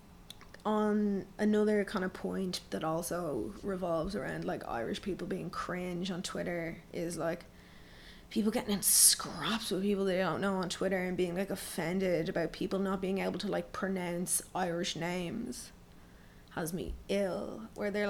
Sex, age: female, 20-39